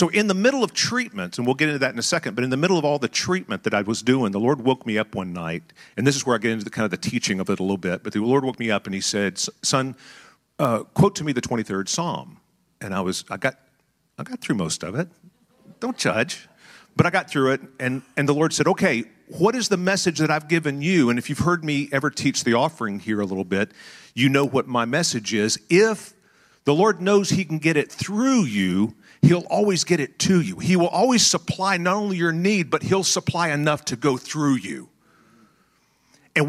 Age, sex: 50-69, male